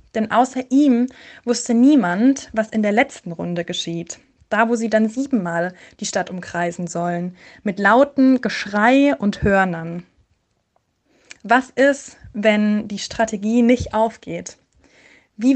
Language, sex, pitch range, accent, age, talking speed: German, female, 200-245 Hz, German, 20-39, 125 wpm